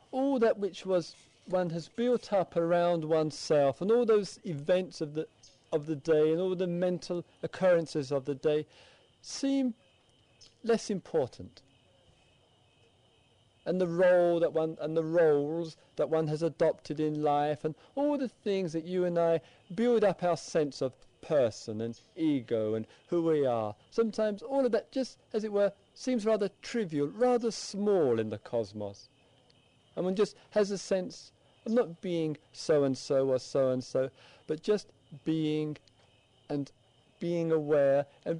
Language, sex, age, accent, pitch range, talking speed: English, male, 50-69, British, 125-185 Hz, 155 wpm